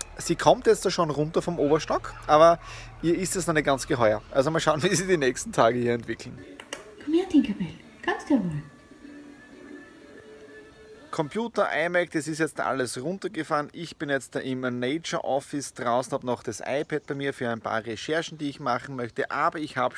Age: 30-49